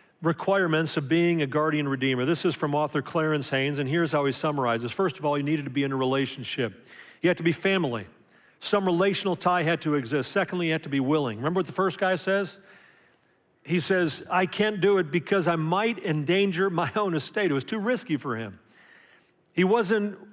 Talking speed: 210 wpm